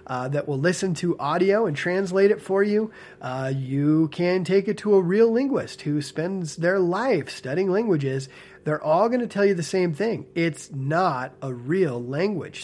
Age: 30-49